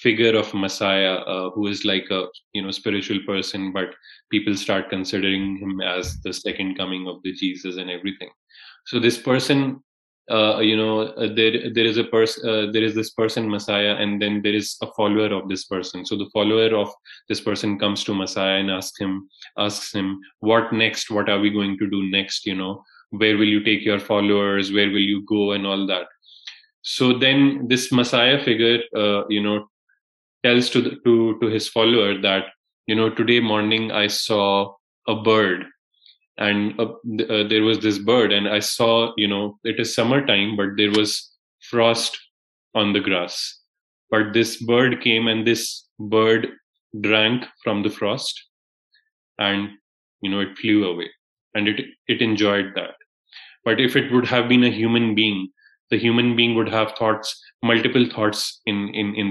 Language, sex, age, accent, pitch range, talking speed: English, male, 20-39, Indian, 100-115 Hz, 180 wpm